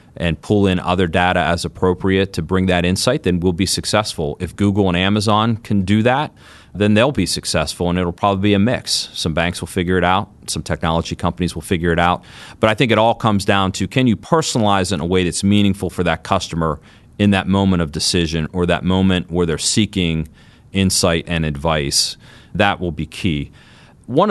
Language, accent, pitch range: English, American, 85-100 Hz